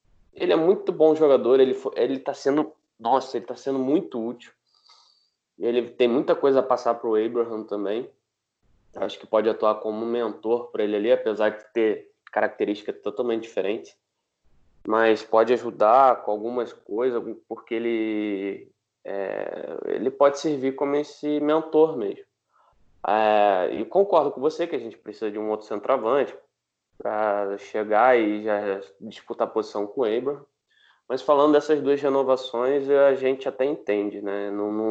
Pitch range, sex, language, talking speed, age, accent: 110-155 Hz, male, Portuguese, 155 wpm, 20-39, Brazilian